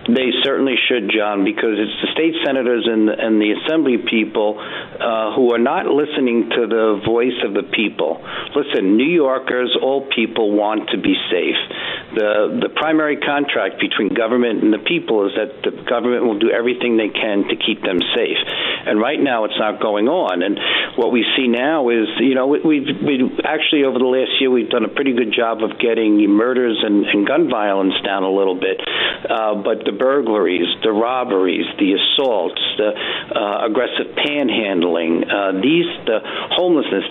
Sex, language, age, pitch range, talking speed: male, English, 60-79, 115-160 Hz, 185 wpm